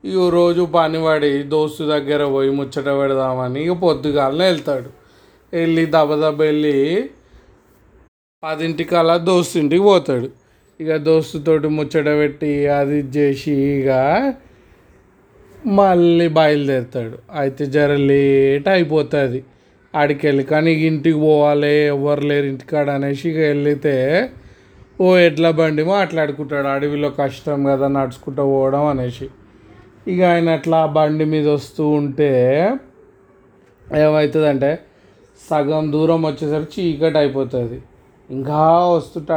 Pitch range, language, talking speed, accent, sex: 140-160 Hz, Telugu, 105 wpm, native, male